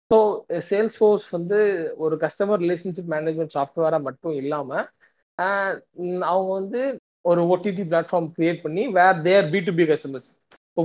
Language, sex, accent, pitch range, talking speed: Tamil, male, native, 140-180 Hz, 135 wpm